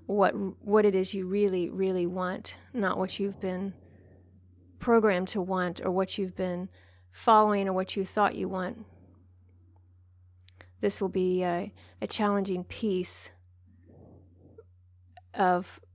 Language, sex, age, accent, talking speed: English, female, 30-49, American, 130 wpm